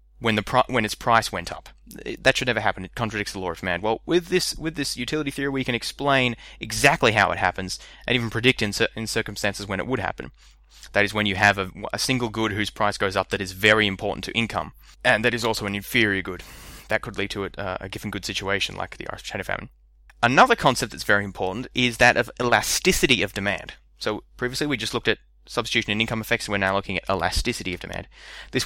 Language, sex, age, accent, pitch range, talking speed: English, male, 20-39, Australian, 95-125 Hz, 235 wpm